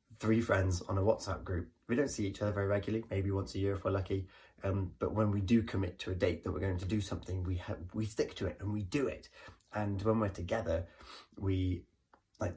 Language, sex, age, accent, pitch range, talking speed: English, male, 20-39, British, 90-110 Hz, 245 wpm